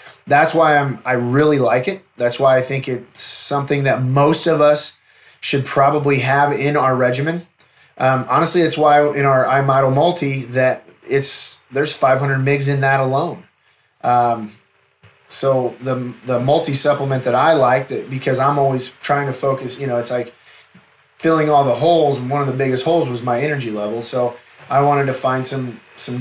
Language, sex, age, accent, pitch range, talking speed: English, male, 20-39, American, 120-145 Hz, 185 wpm